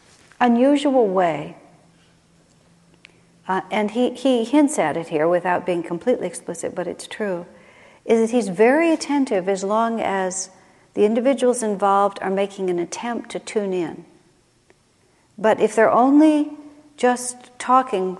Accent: American